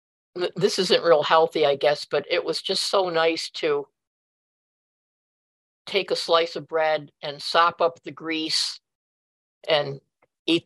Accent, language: American, English